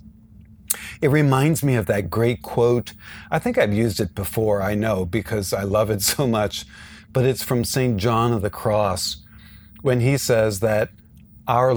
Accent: American